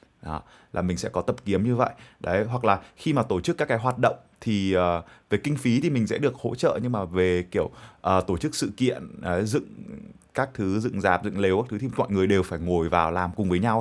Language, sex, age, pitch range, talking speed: Vietnamese, male, 20-39, 90-115 Hz, 265 wpm